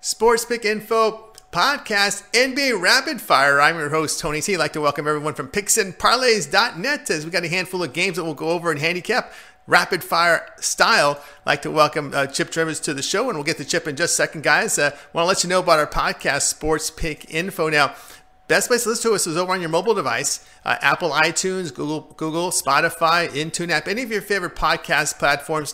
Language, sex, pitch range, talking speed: English, male, 145-175 Hz, 220 wpm